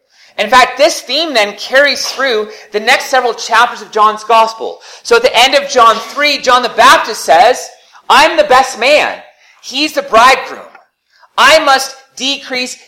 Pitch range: 185-285 Hz